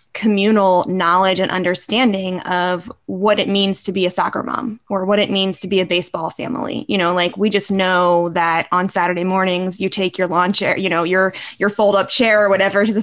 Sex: female